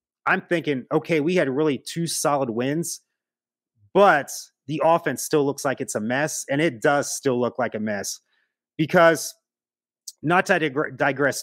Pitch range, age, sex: 130-170 Hz, 30-49, male